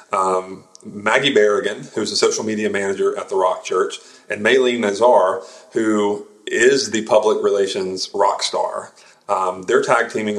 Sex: male